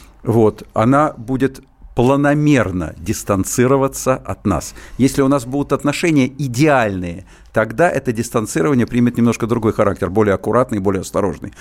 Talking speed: 125 wpm